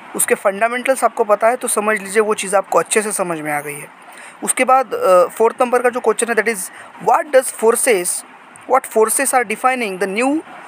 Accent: native